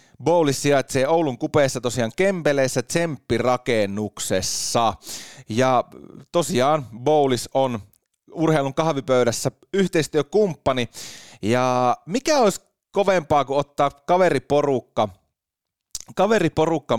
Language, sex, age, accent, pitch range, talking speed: Finnish, male, 30-49, native, 115-155 Hz, 80 wpm